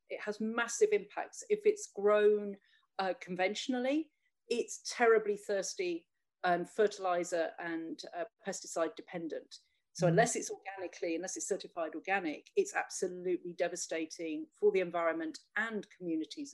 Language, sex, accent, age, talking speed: English, female, British, 40-59, 125 wpm